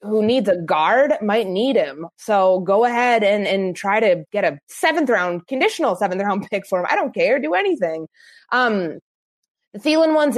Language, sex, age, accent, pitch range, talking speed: English, female, 20-39, American, 160-210 Hz, 190 wpm